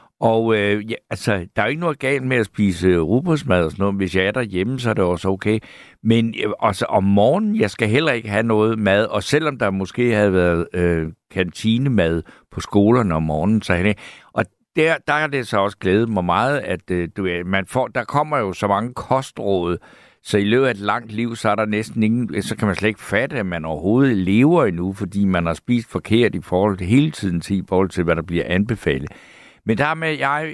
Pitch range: 95-130 Hz